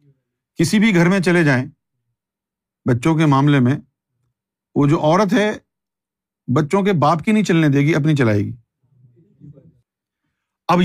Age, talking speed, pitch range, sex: 50-69, 145 wpm, 130-185 Hz, male